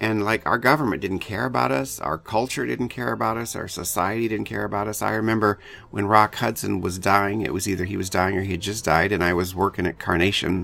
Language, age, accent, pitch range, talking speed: English, 50-69, American, 85-105 Hz, 250 wpm